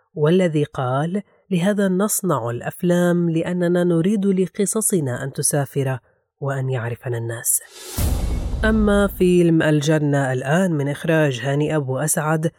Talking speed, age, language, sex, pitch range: 105 wpm, 30-49, Arabic, female, 140-180 Hz